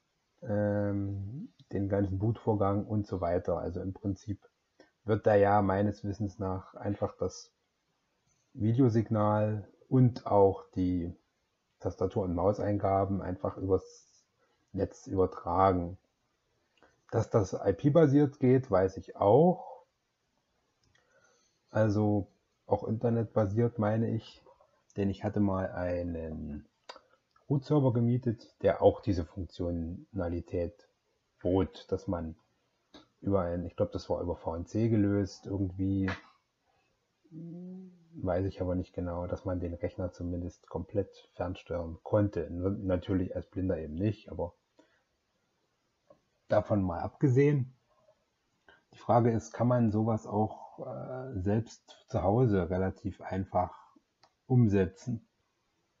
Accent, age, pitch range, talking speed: German, 30-49, 95-115 Hz, 105 wpm